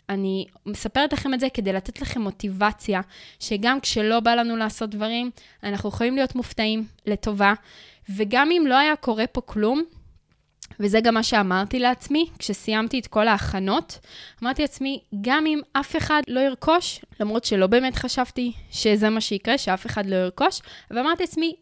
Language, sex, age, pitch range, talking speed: Hebrew, female, 20-39, 205-270 Hz, 160 wpm